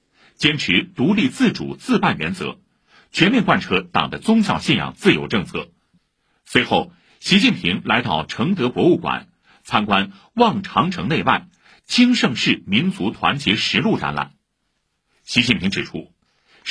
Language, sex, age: Chinese, male, 60-79